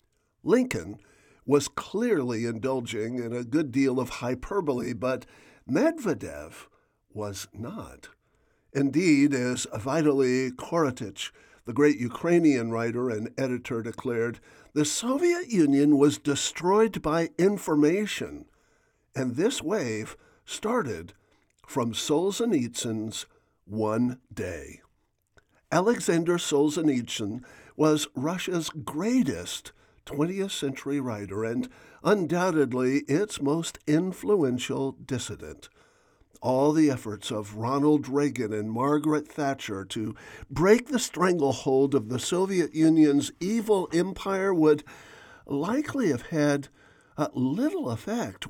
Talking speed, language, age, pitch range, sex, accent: 100 wpm, English, 50-69, 120-165 Hz, male, American